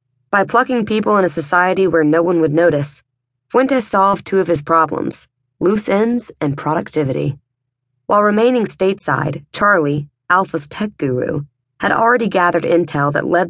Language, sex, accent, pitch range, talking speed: English, female, American, 140-175 Hz, 150 wpm